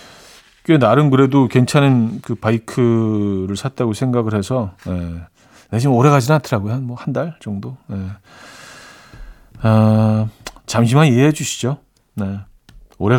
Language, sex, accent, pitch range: Korean, male, native, 115-155 Hz